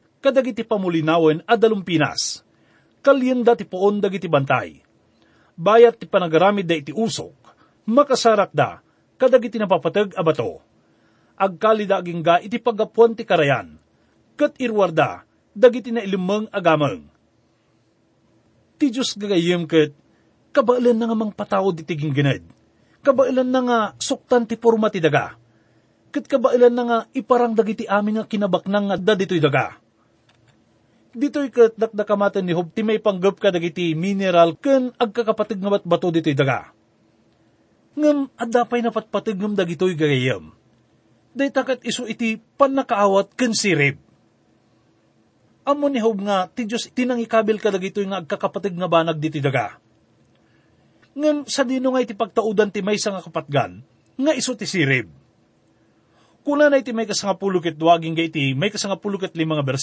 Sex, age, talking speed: male, 40-59, 120 wpm